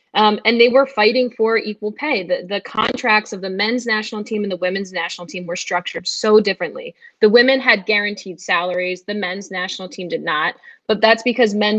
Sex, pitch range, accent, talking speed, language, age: female, 185-230 Hz, American, 205 wpm, English, 10-29